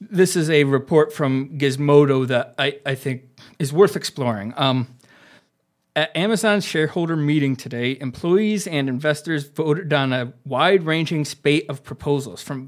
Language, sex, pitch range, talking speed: English, male, 130-160 Hz, 140 wpm